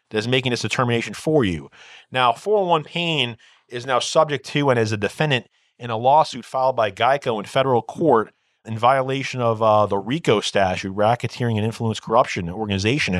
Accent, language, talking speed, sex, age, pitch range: American, English, 175 wpm, male, 30-49, 105-125 Hz